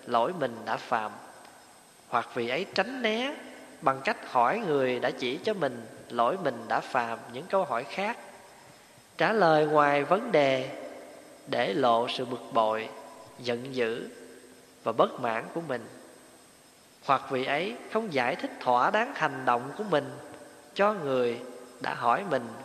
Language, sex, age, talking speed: Vietnamese, male, 20-39, 155 wpm